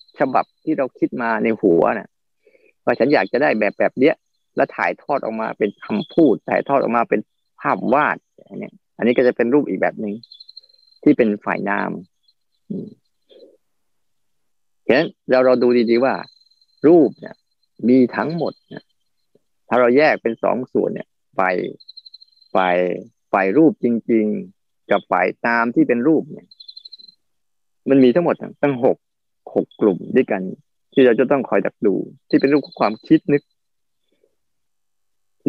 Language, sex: Thai, male